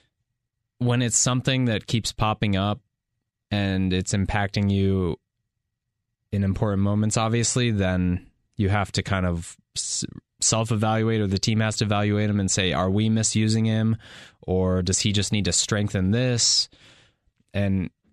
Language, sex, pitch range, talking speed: English, male, 90-110 Hz, 150 wpm